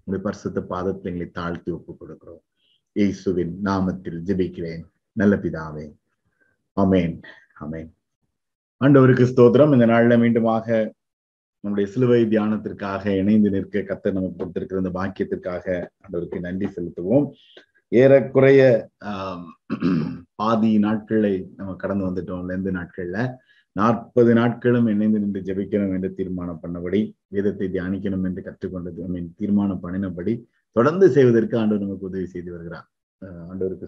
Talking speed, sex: 105 wpm, male